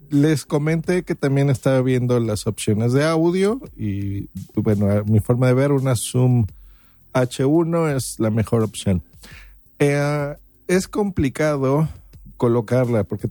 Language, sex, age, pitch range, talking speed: Spanish, male, 50-69, 105-140 Hz, 125 wpm